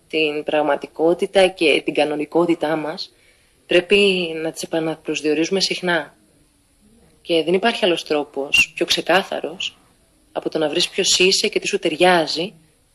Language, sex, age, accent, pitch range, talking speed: Greek, female, 20-39, native, 155-185 Hz, 130 wpm